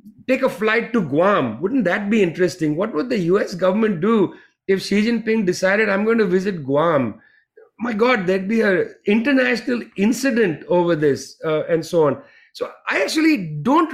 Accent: Indian